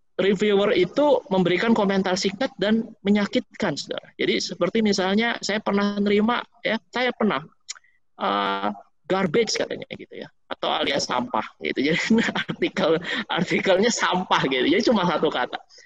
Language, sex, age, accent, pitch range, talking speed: Indonesian, male, 20-39, native, 170-230 Hz, 130 wpm